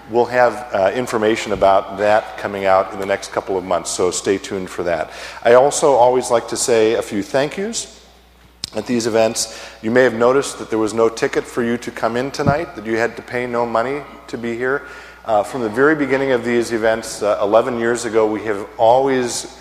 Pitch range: 105-125 Hz